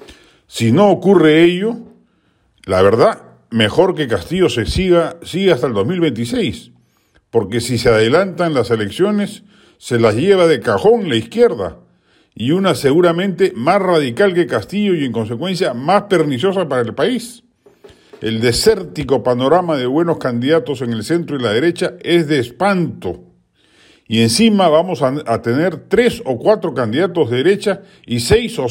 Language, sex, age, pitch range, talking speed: Spanish, male, 50-69, 125-180 Hz, 155 wpm